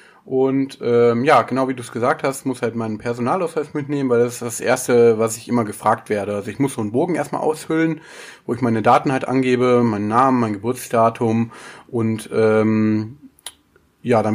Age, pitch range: 30-49, 115-125 Hz